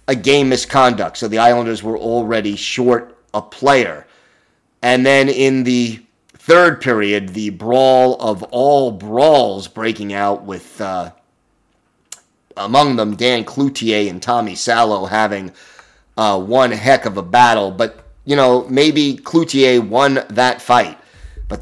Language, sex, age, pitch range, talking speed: English, male, 30-49, 110-135 Hz, 135 wpm